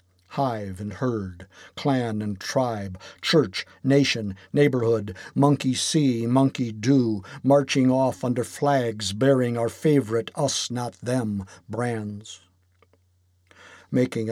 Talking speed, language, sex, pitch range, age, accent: 95 wpm, English, male, 95-130 Hz, 50-69, American